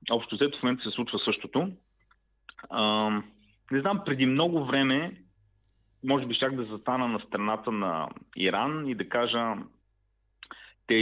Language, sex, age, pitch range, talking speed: Bulgarian, male, 30-49, 105-135 Hz, 135 wpm